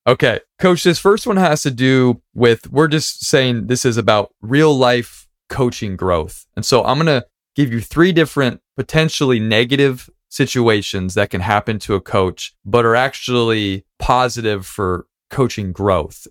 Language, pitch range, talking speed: English, 100-130 Hz, 160 wpm